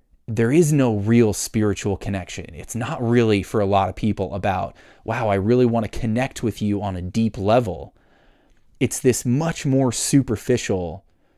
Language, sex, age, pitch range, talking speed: English, male, 30-49, 100-130 Hz, 165 wpm